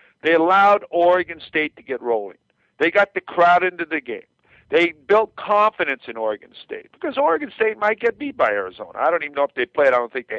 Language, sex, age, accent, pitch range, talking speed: English, male, 50-69, American, 145-220 Hz, 225 wpm